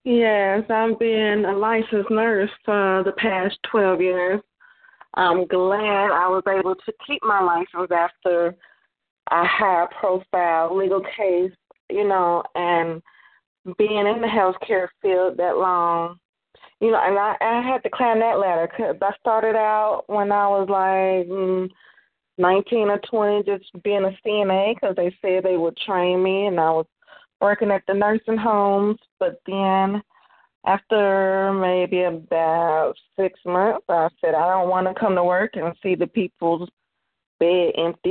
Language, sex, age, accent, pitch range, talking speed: English, female, 20-39, American, 175-210 Hz, 160 wpm